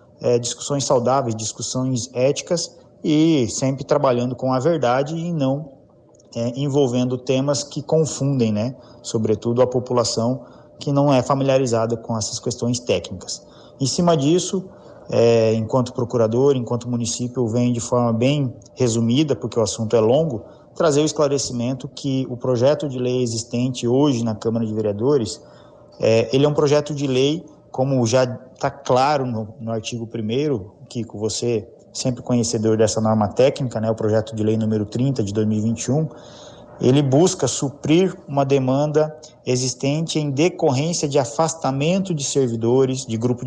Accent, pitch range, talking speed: Brazilian, 115-145 Hz, 150 wpm